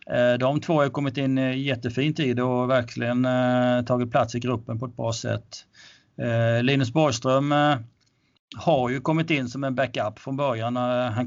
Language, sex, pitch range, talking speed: Swedish, male, 120-140 Hz, 160 wpm